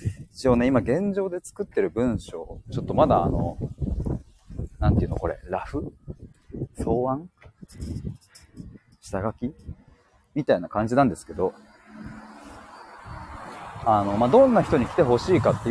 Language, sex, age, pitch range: Japanese, male, 30-49, 100-165 Hz